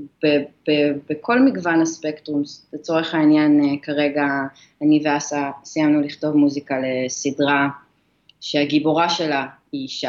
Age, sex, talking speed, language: 20-39, female, 105 wpm, Hebrew